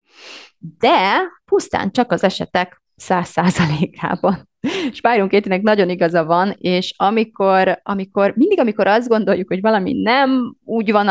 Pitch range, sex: 180-250 Hz, female